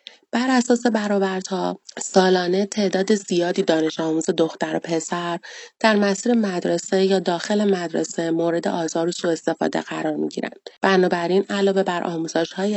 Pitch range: 160-195 Hz